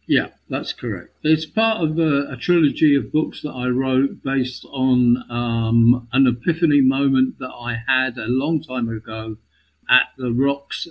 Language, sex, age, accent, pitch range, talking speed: English, male, 50-69, British, 115-135 Hz, 165 wpm